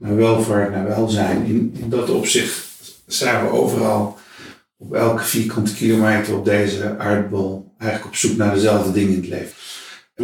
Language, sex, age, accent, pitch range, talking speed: Dutch, male, 50-69, Dutch, 105-125 Hz, 150 wpm